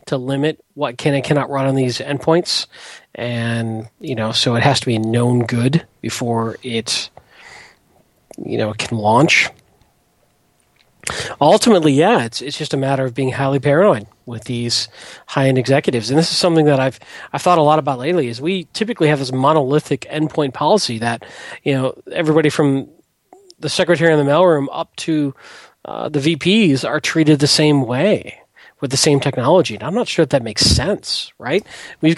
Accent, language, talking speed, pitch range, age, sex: American, English, 175 wpm, 125-155 Hz, 40-59, male